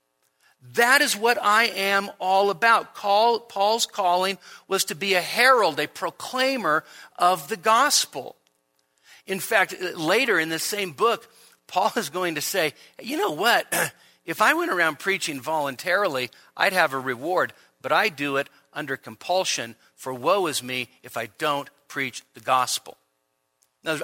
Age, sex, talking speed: 50-69, male, 150 wpm